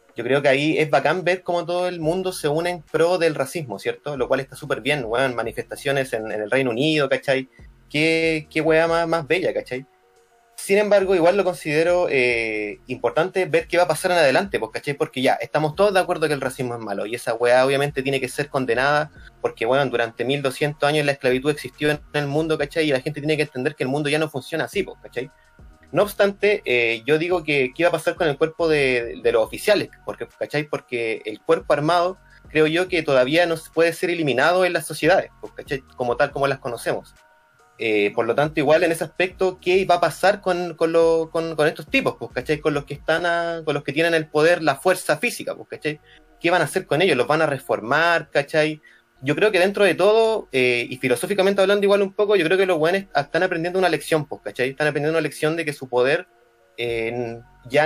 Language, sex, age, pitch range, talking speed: Spanish, male, 20-39, 135-175 Hz, 225 wpm